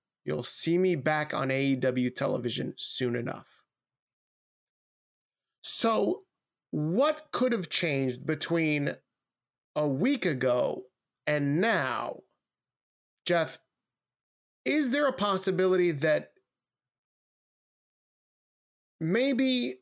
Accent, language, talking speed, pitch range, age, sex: American, English, 80 wpm, 140-185 Hz, 20-39, male